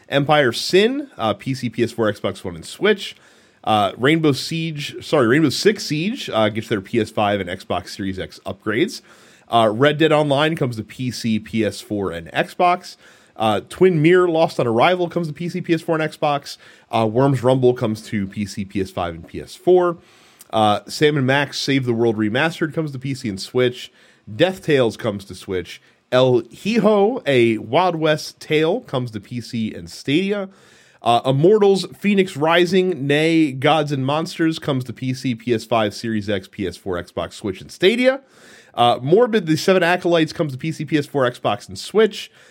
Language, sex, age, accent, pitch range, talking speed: English, male, 30-49, American, 115-165 Hz, 165 wpm